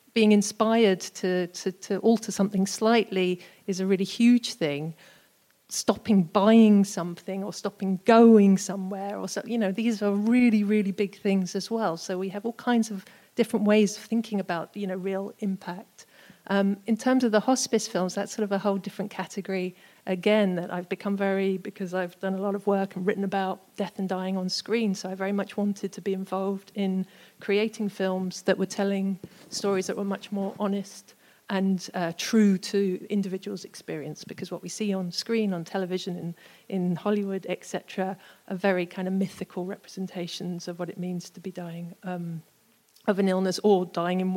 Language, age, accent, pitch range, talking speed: English, 40-59, British, 185-205 Hz, 190 wpm